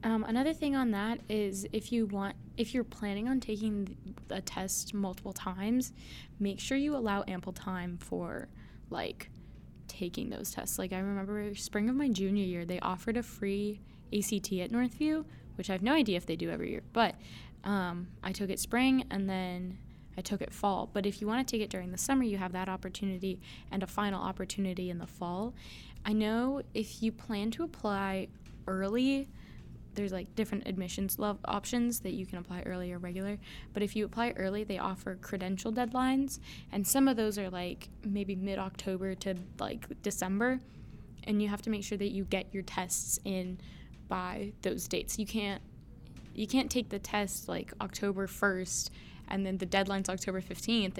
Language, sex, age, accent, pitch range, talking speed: English, female, 10-29, American, 190-230 Hz, 185 wpm